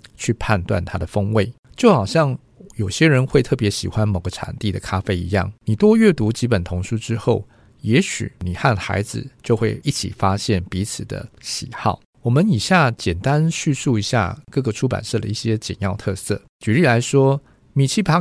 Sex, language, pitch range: male, Chinese, 100-130 Hz